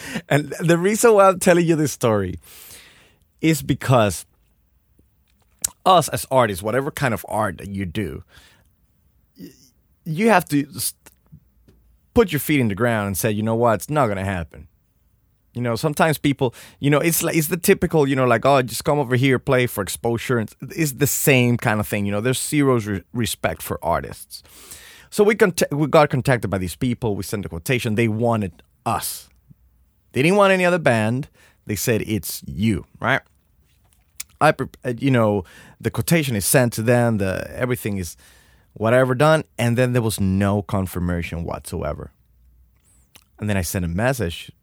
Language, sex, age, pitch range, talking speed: English, male, 20-39, 95-140 Hz, 175 wpm